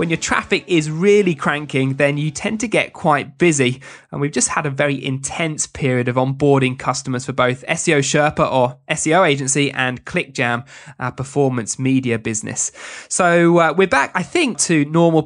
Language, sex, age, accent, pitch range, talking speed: English, male, 20-39, British, 135-180 Hz, 175 wpm